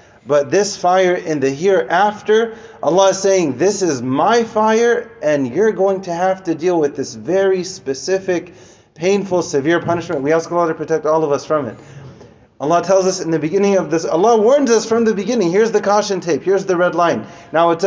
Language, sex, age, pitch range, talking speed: English, male, 30-49, 155-195 Hz, 205 wpm